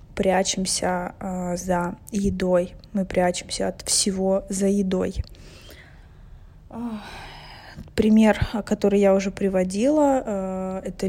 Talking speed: 90 wpm